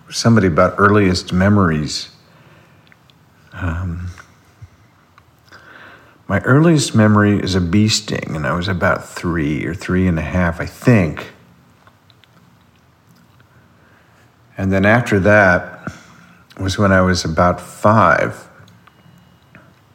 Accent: American